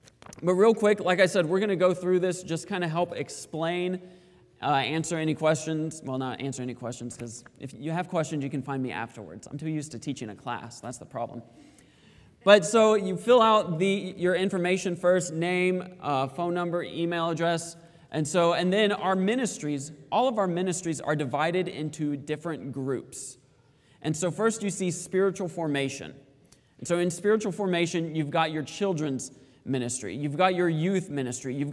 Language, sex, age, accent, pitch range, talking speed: English, male, 30-49, American, 140-180 Hz, 185 wpm